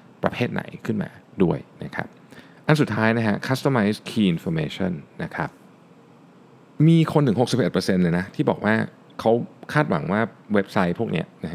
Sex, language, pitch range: male, Thai, 95-130 Hz